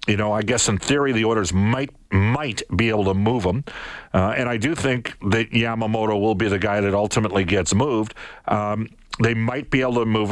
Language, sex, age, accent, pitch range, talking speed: English, male, 50-69, American, 95-115 Hz, 215 wpm